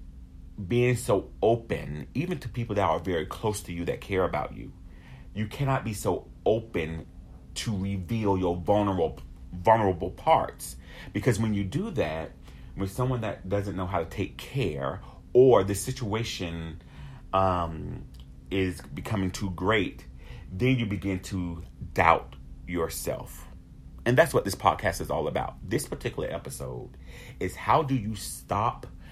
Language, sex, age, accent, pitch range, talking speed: English, male, 30-49, American, 80-100 Hz, 145 wpm